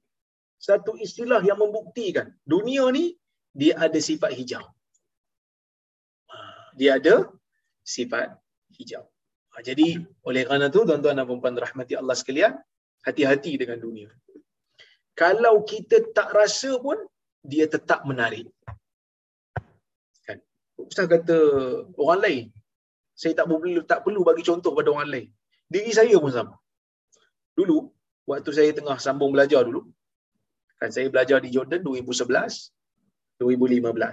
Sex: male